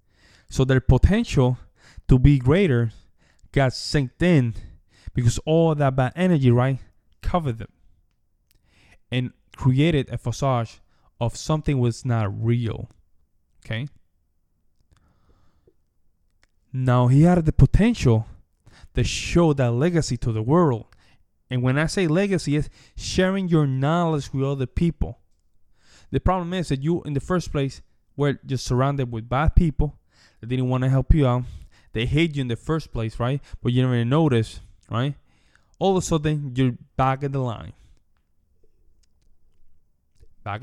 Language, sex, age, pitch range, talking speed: English, male, 20-39, 85-140 Hz, 140 wpm